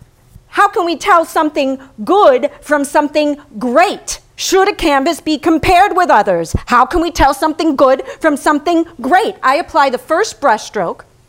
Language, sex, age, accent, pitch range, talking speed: English, female, 40-59, American, 245-310 Hz, 160 wpm